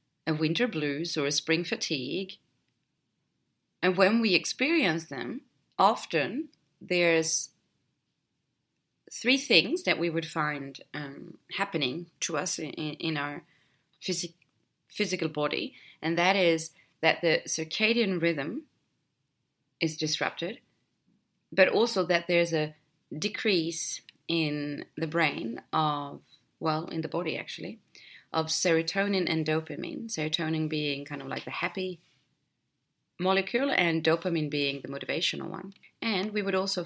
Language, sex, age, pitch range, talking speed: English, female, 30-49, 150-185 Hz, 120 wpm